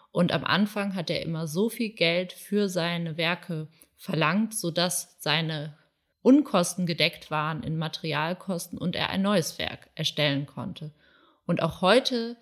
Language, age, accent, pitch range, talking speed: German, 20-39, German, 160-195 Hz, 145 wpm